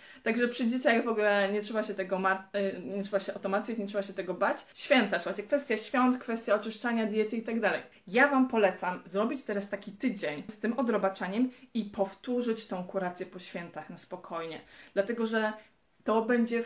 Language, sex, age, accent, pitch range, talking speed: Polish, female, 20-39, native, 195-245 Hz, 195 wpm